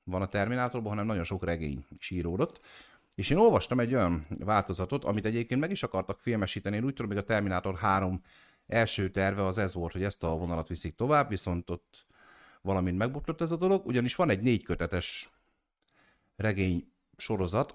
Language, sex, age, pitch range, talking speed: Hungarian, male, 50-69, 90-120 Hz, 175 wpm